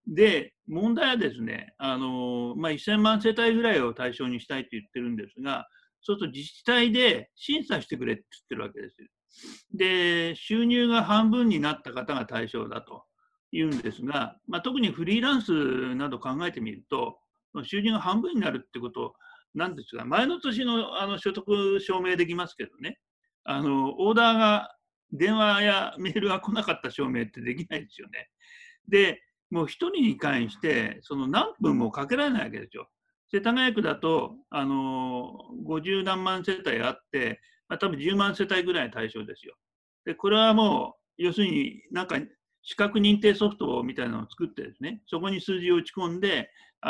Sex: male